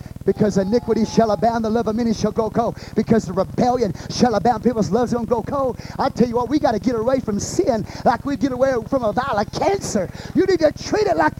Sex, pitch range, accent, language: male, 135-215 Hz, American, English